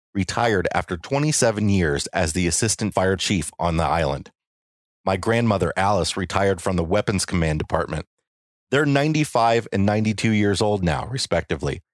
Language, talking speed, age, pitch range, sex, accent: English, 145 wpm, 30-49, 85-115 Hz, male, American